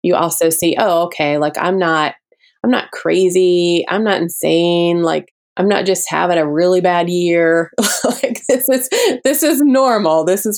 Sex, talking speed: female, 175 wpm